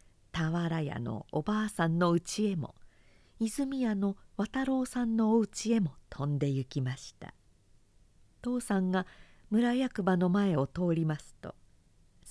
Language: Japanese